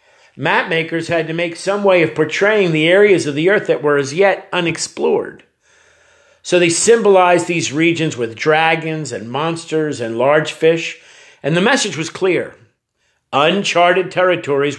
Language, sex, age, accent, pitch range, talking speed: English, male, 50-69, American, 145-190 Hz, 150 wpm